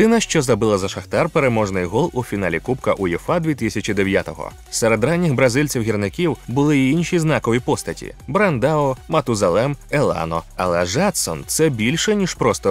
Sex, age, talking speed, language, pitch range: male, 30-49, 140 wpm, Ukrainian, 110-155 Hz